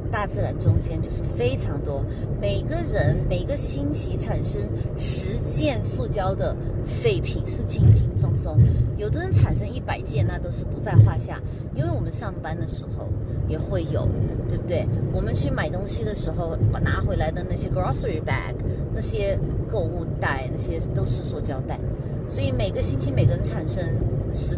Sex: female